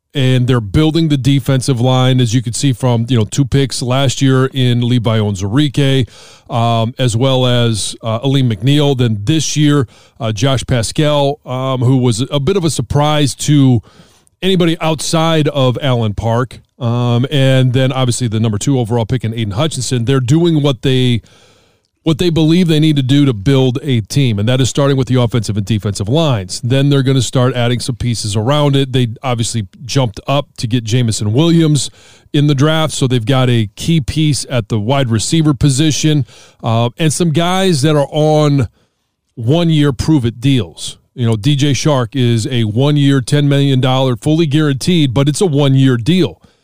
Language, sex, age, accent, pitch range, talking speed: English, male, 30-49, American, 120-145 Hz, 185 wpm